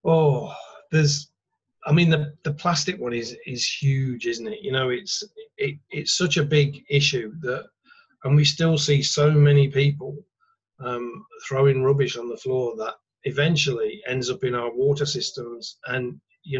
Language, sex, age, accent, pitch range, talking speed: English, male, 30-49, British, 125-160 Hz, 165 wpm